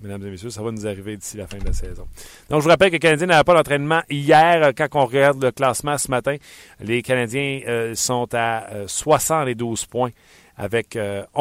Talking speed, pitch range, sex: 220 wpm, 100-120 Hz, male